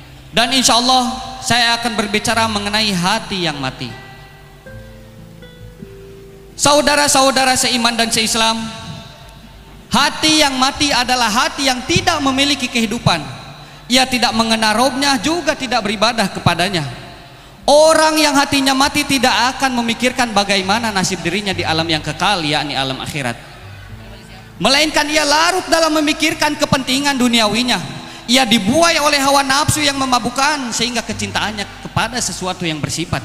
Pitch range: 170-280 Hz